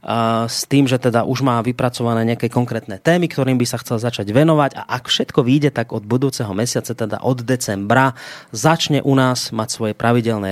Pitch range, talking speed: 105-130 Hz, 190 wpm